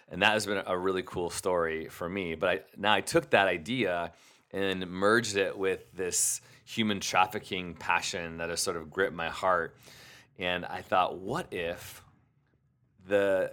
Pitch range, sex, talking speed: 85-105 Hz, male, 170 wpm